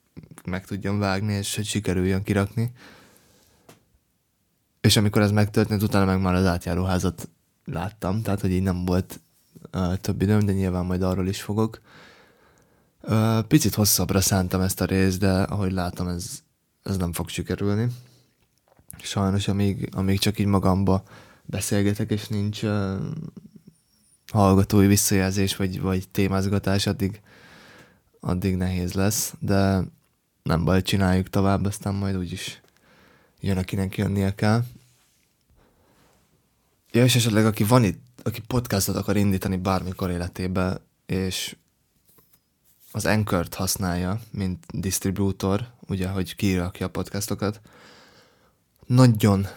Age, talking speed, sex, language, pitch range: 20-39, 125 wpm, male, Hungarian, 95-105 Hz